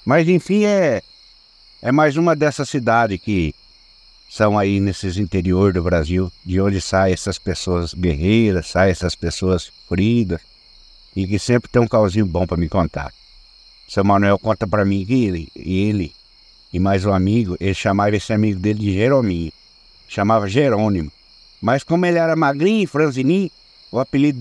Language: Portuguese